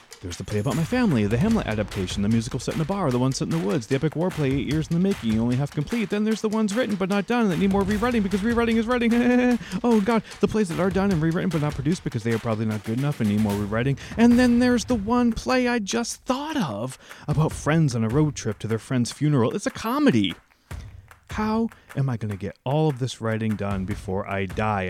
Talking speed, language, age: 265 wpm, English, 30-49